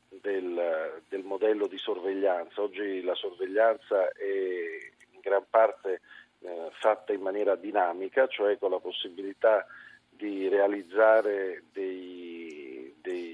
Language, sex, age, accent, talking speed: Italian, male, 50-69, native, 115 wpm